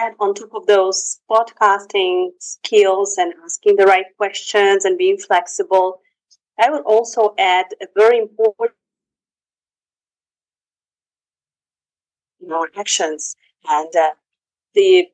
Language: English